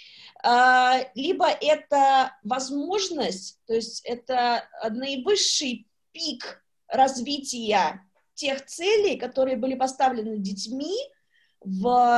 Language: Russian